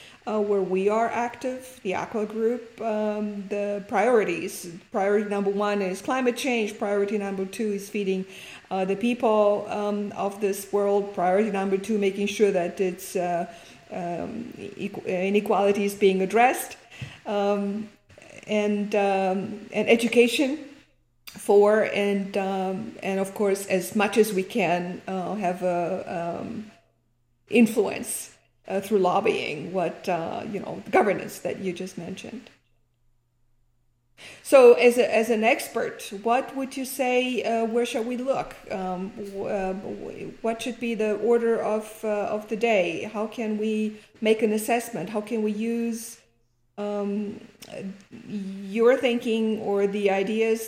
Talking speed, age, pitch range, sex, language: 140 wpm, 50-69, 195-225 Hz, female, English